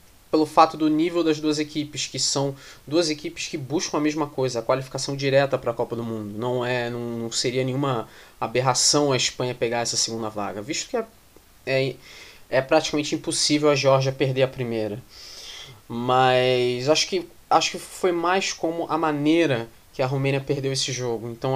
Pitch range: 115-150 Hz